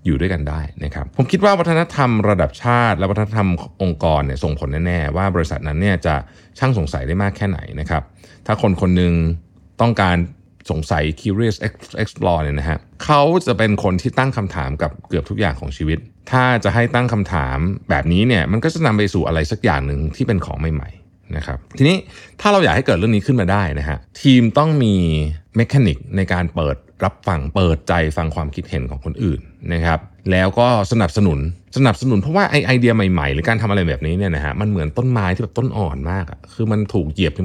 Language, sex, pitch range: Thai, male, 80-110 Hz